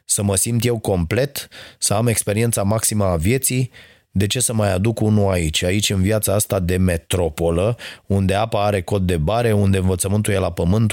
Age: 30-49